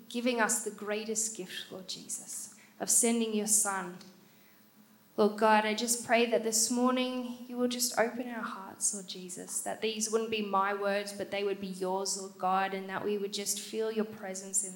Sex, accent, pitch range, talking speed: female, Australian, 200-250 Hz, 200 wpm